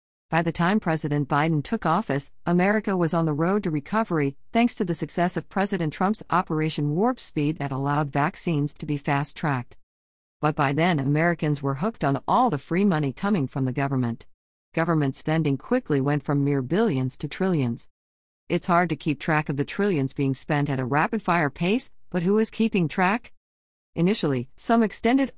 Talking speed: 180 wpm